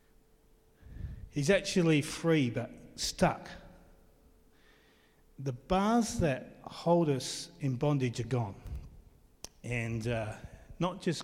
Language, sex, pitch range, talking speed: English, male, 130-170 Hz, 95 wpm